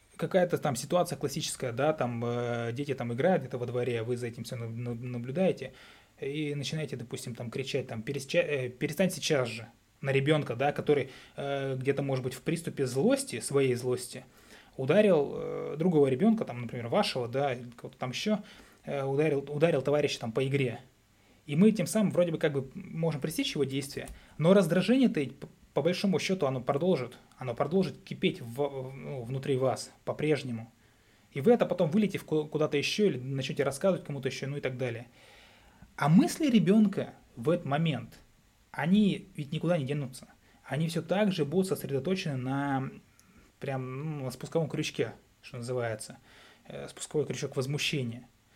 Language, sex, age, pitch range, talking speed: Russian, male, 20-39, 125-165 Hz, 165 wpm